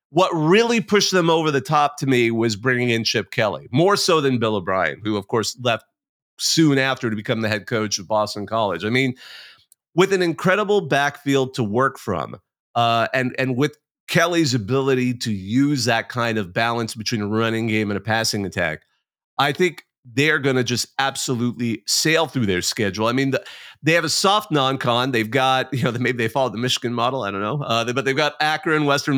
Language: English